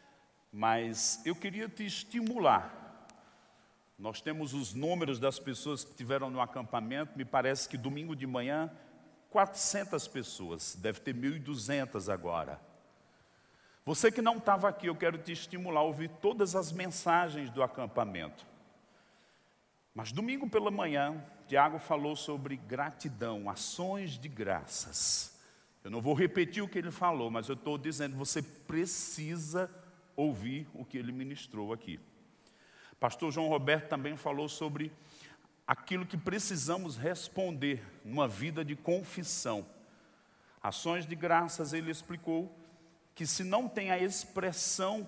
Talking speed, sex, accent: 130 wpm, male, Brazilian